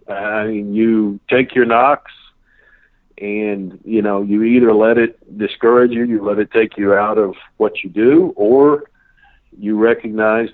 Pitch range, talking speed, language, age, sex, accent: 105-125 Hz, 160 wpm, English, 50-69, male, American